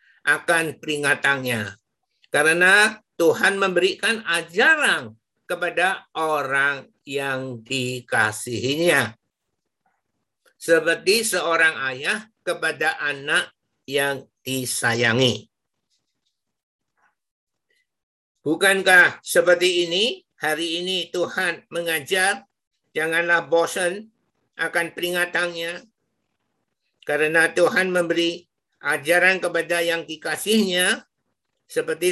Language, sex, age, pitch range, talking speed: Indonesian, male, 60-79, 155-195 Hz, 65 wpm